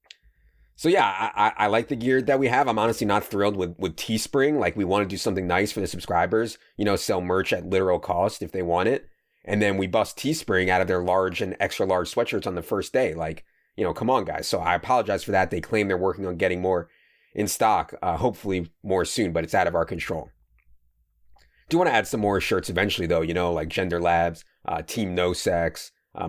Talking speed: 240 wpm